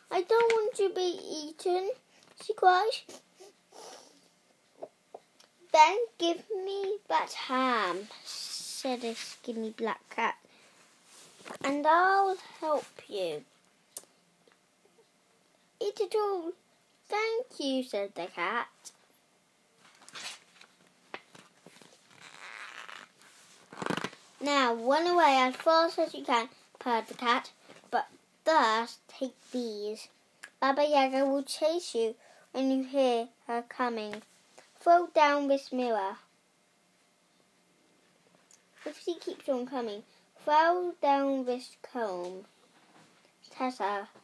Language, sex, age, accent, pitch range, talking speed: English, female, 10-29, British, 230-350 Hz, 90 wpm